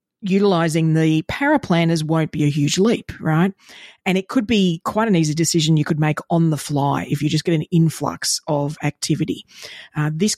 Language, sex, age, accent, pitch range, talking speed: English, female, 40-59, Australian, 155-180 Hz, 195 wpm